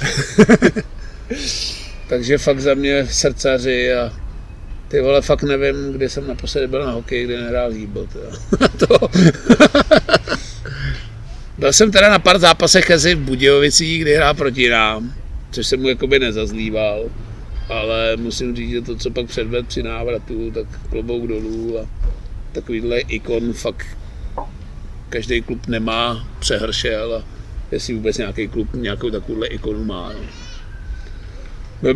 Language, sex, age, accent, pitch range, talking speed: Czech, male, 50-69, native, 110-130 Hz, 120 wpm